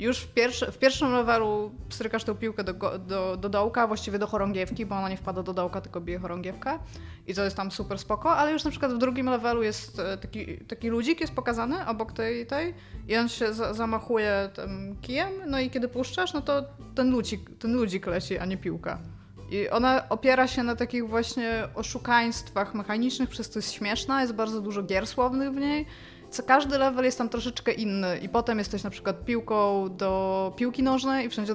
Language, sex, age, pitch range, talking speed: Polish, female, 20-39, 190-240 Hz, 190 wpm